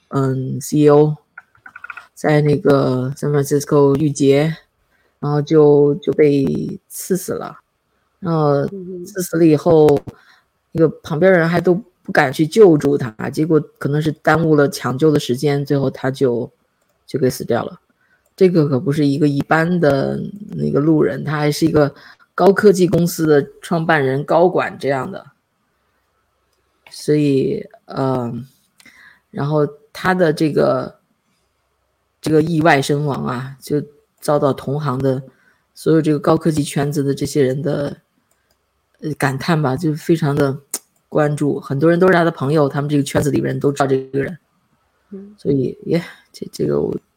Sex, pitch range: female, 140-165 Hz